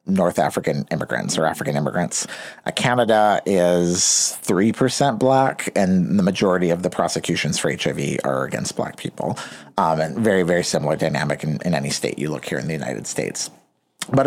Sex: male